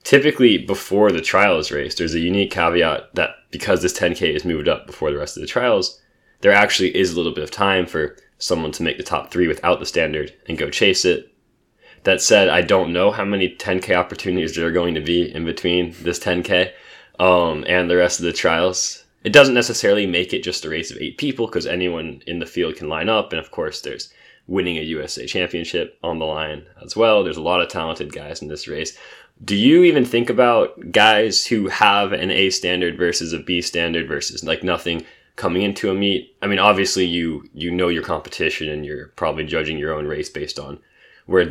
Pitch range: 85-110 Hz